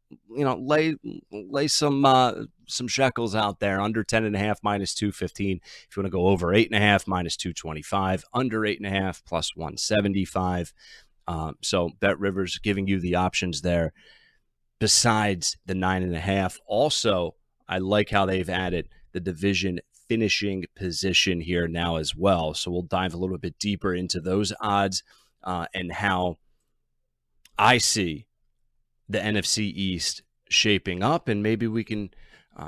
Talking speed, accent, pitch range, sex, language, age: 165 wpm, American, 90-105 Hz, male, English, 30-49